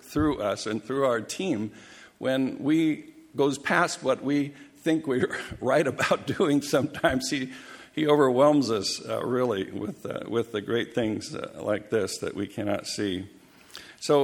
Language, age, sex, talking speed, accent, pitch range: English, 60-79, male, 160 wpm, American, 105-130 Hz